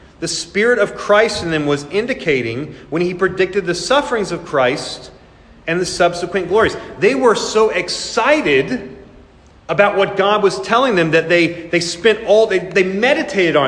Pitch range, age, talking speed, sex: 145-195 Hz, 30-49, 165 wpm, male